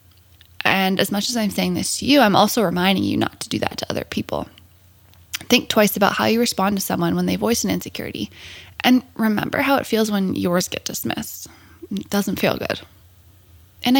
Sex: female